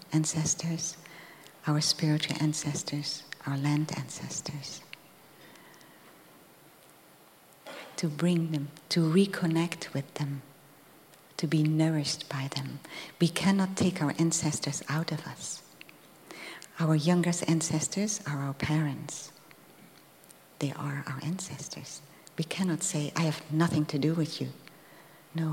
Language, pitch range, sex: English, 145-165 Hz, female